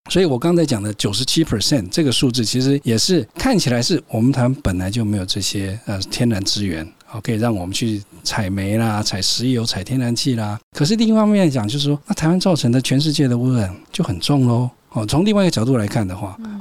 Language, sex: Chinese, male